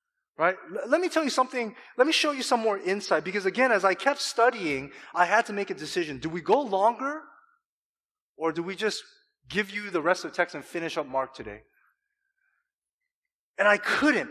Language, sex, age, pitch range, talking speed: English, male, 30-49, 160-260 Hz, 200 wpm